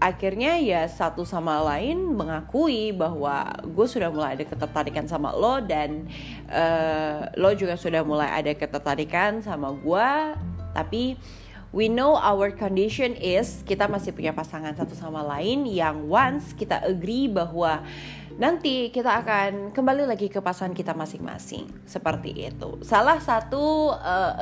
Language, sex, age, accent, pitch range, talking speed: Indonesian, female, 20-39, native, 160-230 Hz, 140 wpm